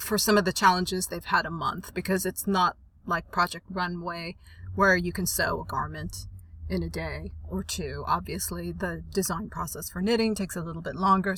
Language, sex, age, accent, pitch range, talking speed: English, female, 30-49, American, 175-200 Hz, 195 wpm